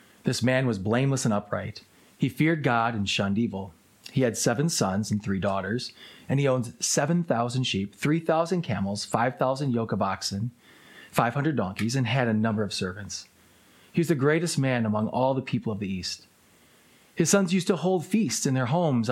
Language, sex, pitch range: English, male, 110-145 Hz